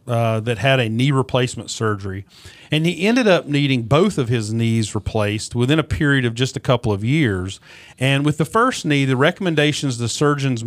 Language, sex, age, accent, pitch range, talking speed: English, male, 40-59, American, 115-150 Hz, 195 wpm